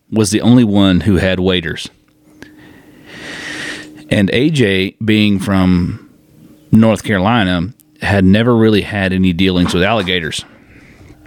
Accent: American